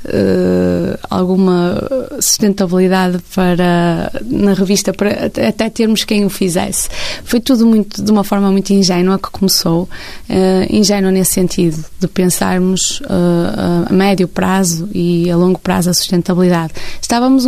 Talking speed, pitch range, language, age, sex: 135 wpm, 180-205 Hz, Portuguese, 20-39, female